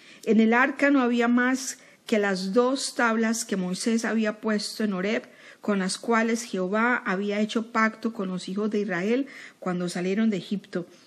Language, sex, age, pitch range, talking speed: Spanish, female, 40-59, 195-235 Hz, 175 wpm